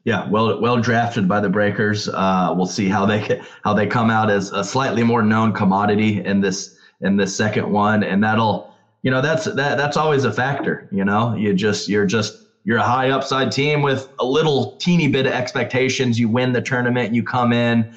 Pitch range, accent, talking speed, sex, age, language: 105-130 Hz, American, 210 wpm, male, 20-39, English